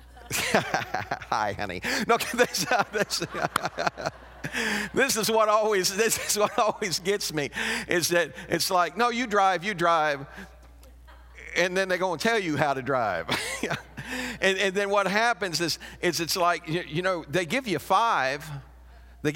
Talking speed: 165 wpm